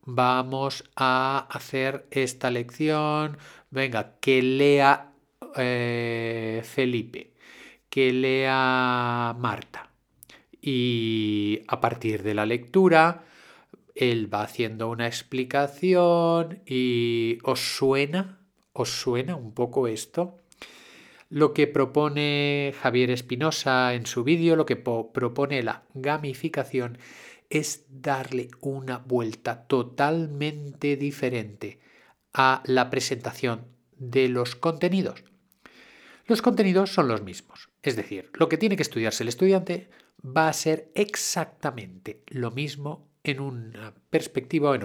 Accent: Spanish